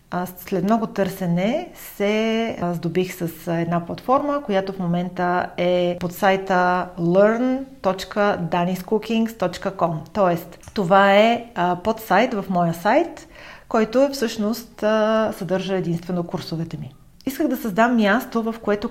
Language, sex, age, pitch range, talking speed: Bulgarian, female, 40-59, 175-220 Hz, 115 wpm